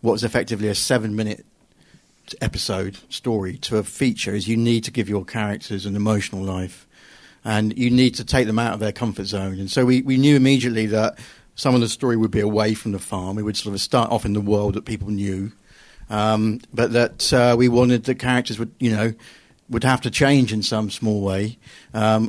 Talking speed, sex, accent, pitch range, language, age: 215 wpm, male, British, 105-120 Hz, English, 50-69